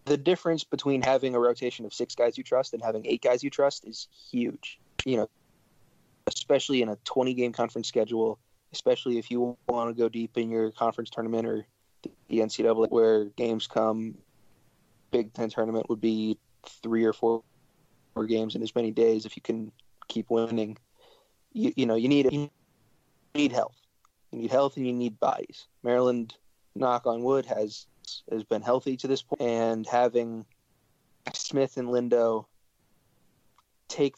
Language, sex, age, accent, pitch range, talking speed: English, male, 20-39, American, 110-130 Hz, 165 wpm